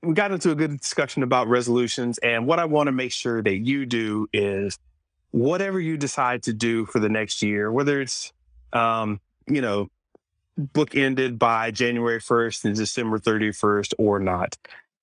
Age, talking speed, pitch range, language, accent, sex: 30-49, 170 wpm, 100-125 Hz, English, American, male